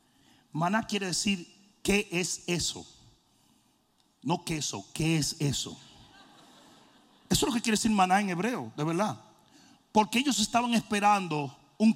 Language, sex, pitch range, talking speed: Spanish, male, 185-250 Hz, 135 wpm